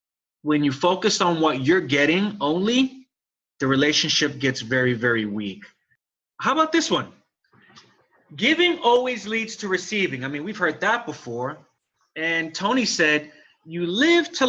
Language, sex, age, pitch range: English, male, 30-49, 140-210 Hz